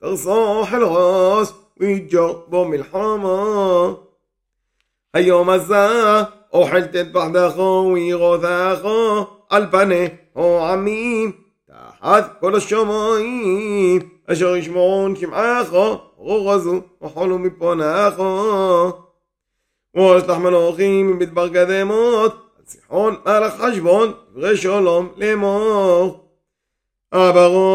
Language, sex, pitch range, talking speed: Hebrew, male, 180-210 Hz, 80 wpm